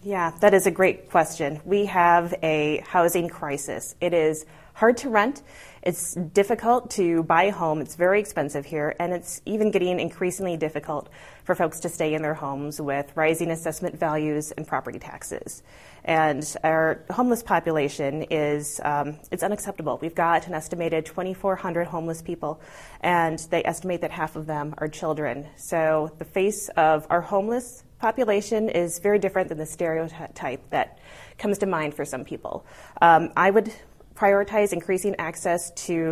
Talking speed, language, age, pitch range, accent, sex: 160 wpm, English, 30-49, 155-195 Hz, American, female